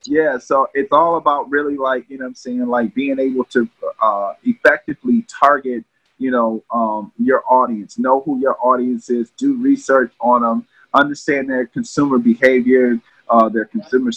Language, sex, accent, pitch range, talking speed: English, male, American, 115-135 Hz, 170 wpm